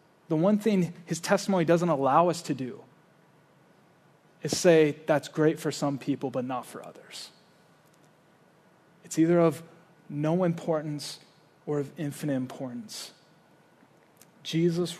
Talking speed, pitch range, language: 125 wpm, 145-175 Hz, English